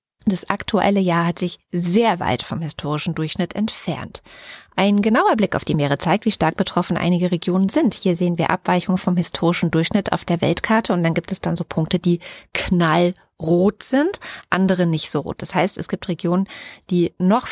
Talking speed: 190 wpm